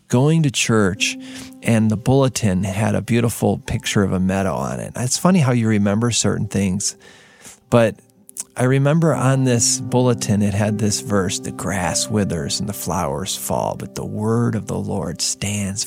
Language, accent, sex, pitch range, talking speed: English, American, male, 105-140 Hz, 175 wpm